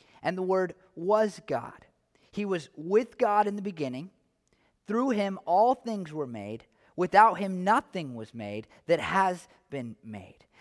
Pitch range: 180-230 Hz